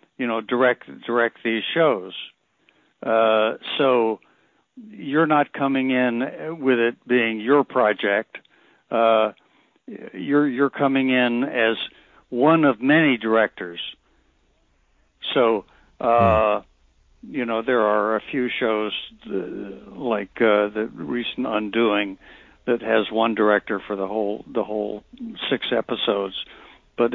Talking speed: 120 wpm